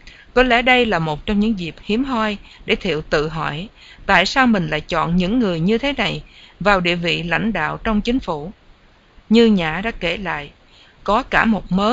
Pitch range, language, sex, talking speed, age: 170-225 Hz, English, female, 205 wpm, 50-69